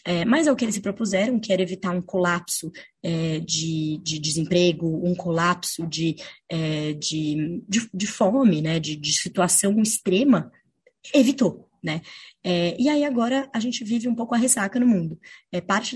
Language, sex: Portuguese, female